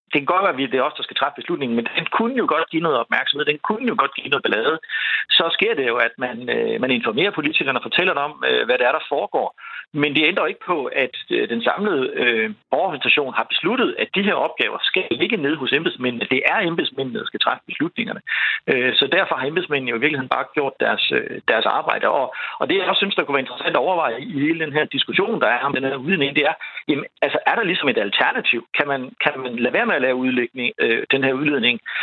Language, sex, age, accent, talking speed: Danish, male, 60-79, native, 245 wpm